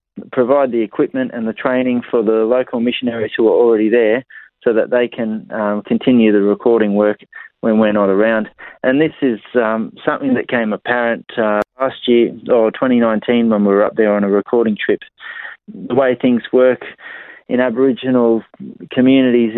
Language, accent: English, Australian